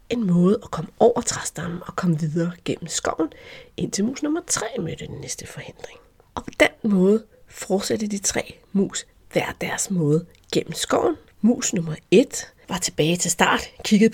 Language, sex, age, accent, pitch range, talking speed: Danish, female, 30-49, native, 170-245 Hz, 170 wpm